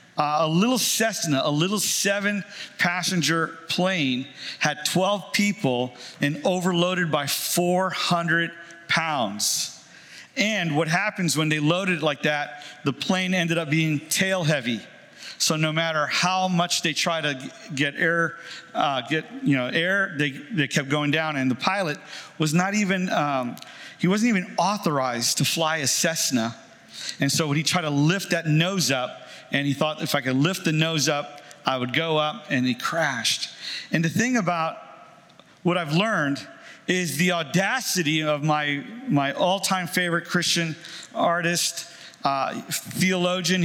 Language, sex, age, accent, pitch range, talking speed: English, male, 50-69, American, 150-185 Hz, 155 wpm